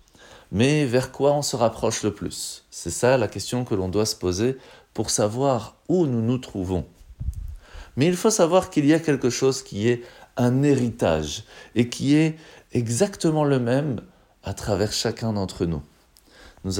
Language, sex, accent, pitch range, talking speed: French, male, French, 100-135 Hz, 170 wpm